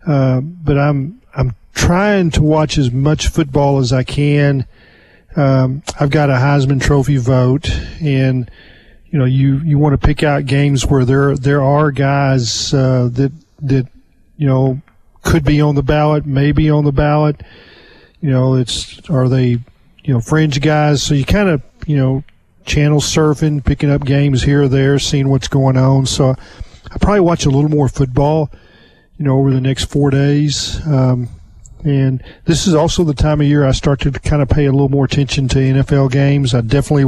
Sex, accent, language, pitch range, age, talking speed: male, American, English, 130-145 Hz, 40-59, 185 wpm